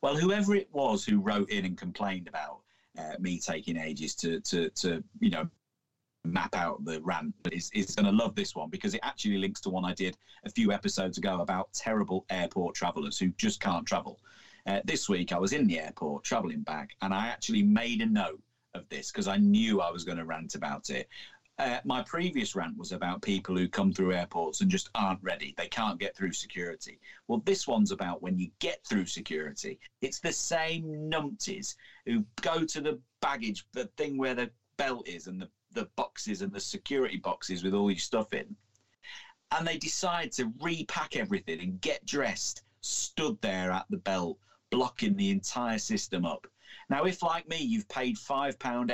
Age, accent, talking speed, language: 40-59, British, 195 wpm, English